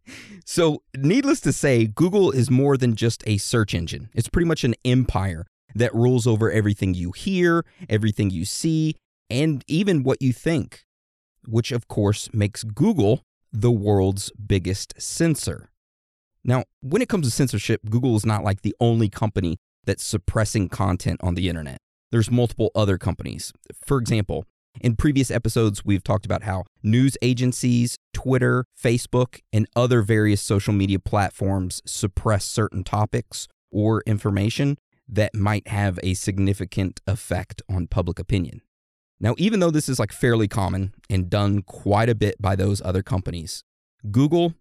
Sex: male